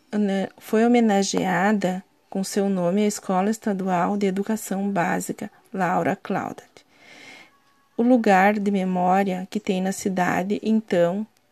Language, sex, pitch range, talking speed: Portuguese, female, 185-220 Hz, 115 wpm